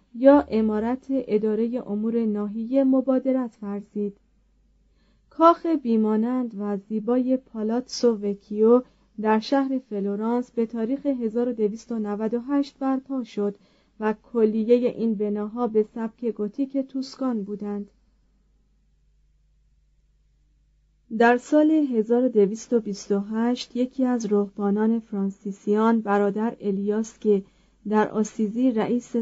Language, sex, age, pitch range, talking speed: Persian, female, 30-49, 210-245 Hz, 90 wpm